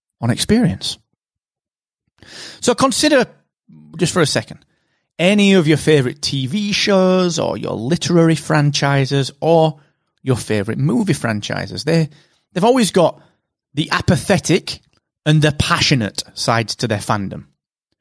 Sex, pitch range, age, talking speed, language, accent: male, 120-175 Hz, 30-49, 120 wpm, English, British